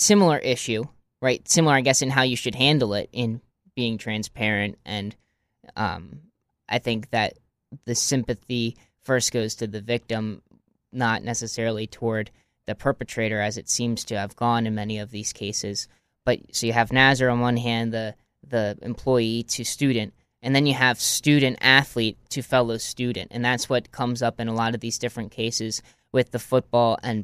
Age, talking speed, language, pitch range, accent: 10-29, 180 wpm, English, 110-125 Hz, American